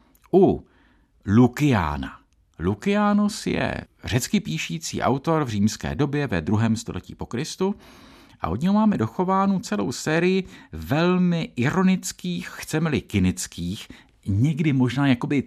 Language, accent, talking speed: Czech, Slovak, 115 wpm